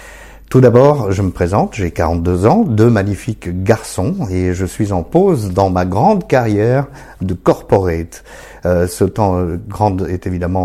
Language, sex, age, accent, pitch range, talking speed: French, male, 50-69, French, 90-120 Hz, 165 wpm